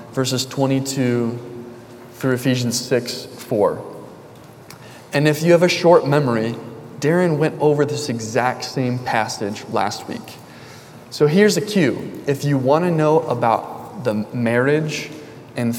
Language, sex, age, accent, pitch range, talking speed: English, male, 20-39, American, 115-140 Hz, 135 wpm